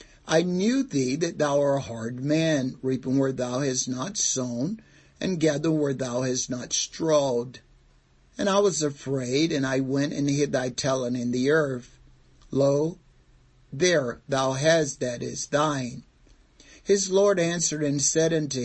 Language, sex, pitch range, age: English, male, 130-160 Hz, 60-79